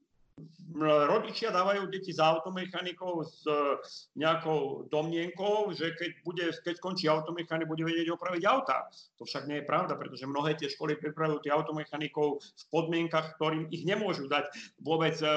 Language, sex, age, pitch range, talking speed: Slovak, male, 50-69, 150-180 Hz, 140 wpm